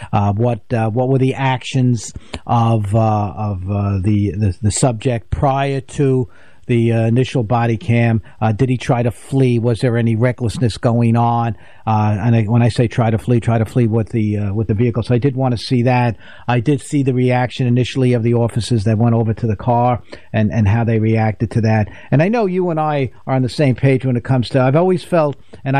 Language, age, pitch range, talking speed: English, 50-69, 115-145 Hz, 235 wpm